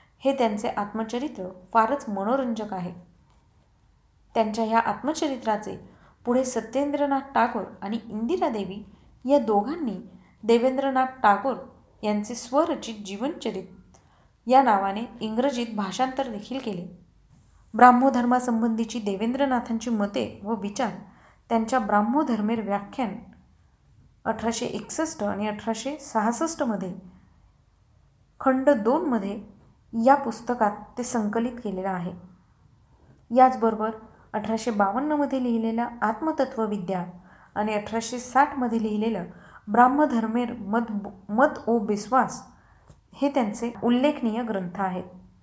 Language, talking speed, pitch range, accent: Marathi, 90 wpm, 205-255 Hz, native